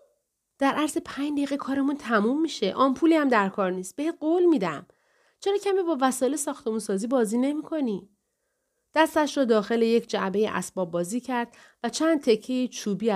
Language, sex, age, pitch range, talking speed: Persian, female, 40-59, 195-265 Hz, 155 wpm